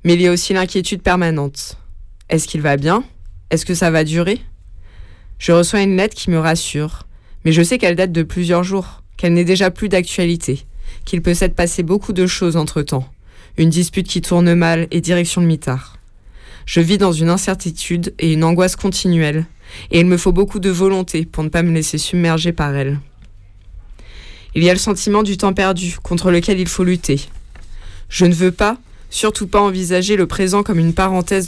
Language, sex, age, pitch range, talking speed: French, female, 20-39, 155-190 Hz, 195 wpm